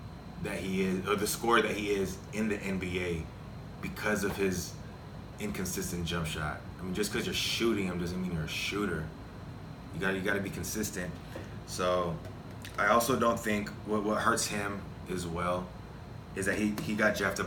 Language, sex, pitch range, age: English, male, 90-105 Hz, 20-39